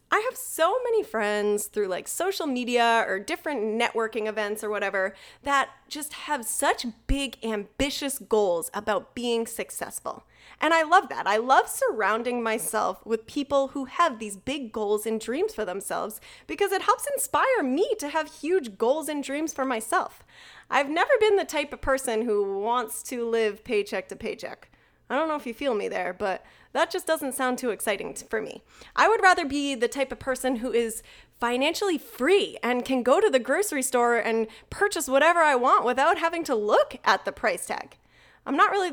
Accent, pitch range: American, 215-300 Hz